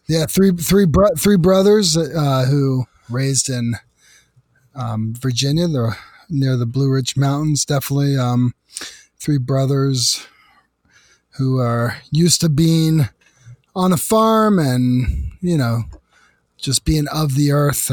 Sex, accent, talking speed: male, American, 125 wpm